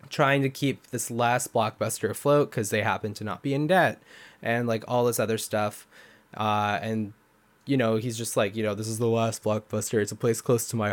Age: 20-39